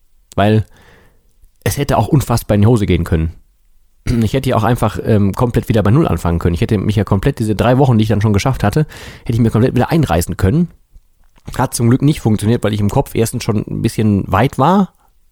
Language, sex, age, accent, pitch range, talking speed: German, male, 30-49, German, 95-125 Hz, 225 wpm